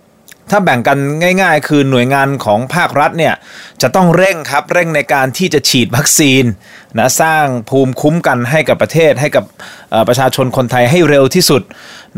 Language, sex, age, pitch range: Thai, male, 20-39, 115-145 Hz